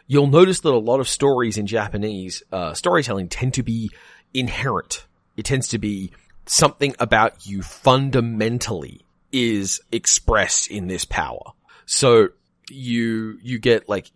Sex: male